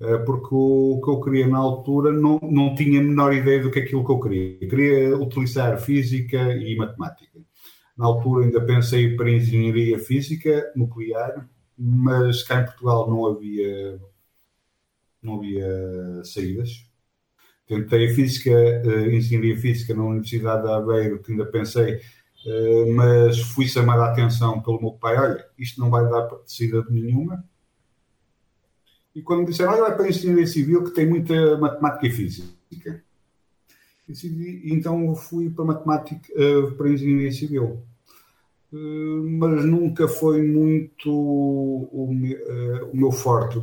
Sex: male